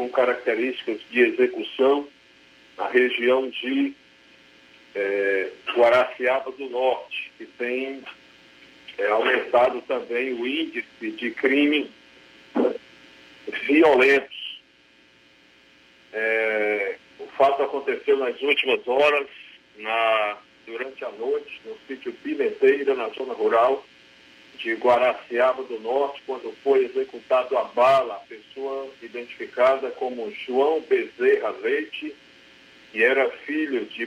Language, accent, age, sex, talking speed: Portuguese, Brazilian, 40-59, male, 95 wpm